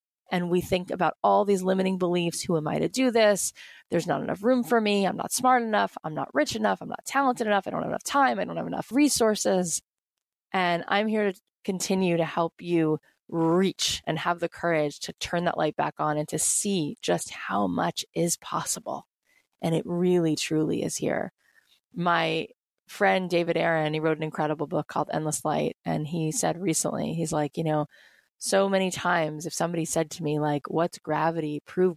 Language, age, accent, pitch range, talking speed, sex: English, 20-39, American, 160-205 Hz, 200 wpm, female